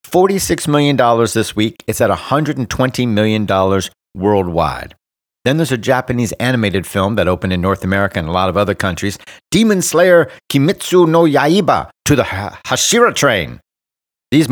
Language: English